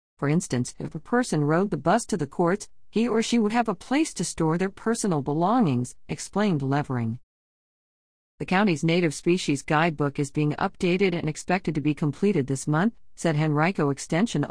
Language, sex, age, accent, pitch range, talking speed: English, female, 50-69, American, 145-180 Hz, 180 wpm